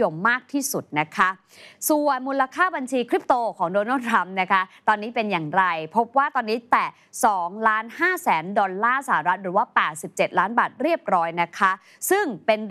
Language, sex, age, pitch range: Thai, female, 20-39, 185-240 Hz